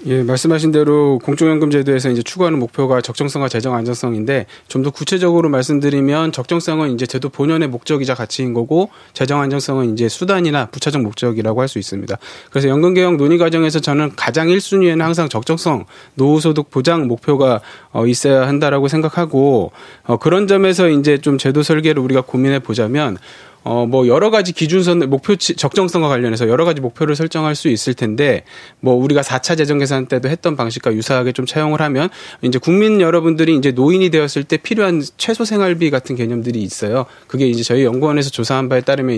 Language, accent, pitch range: Korean, native, 130-165 Hz